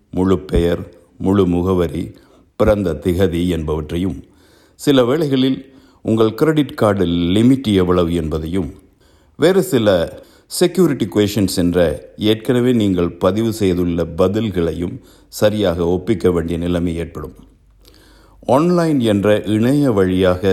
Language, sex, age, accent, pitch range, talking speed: Tamil, male, 60-79, native, 85-110 Hz, 100 wpm